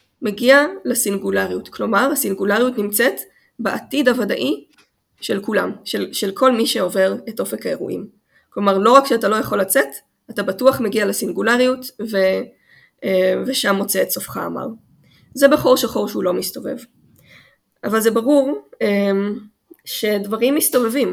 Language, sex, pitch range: Hebrew, female, 200-265 Hz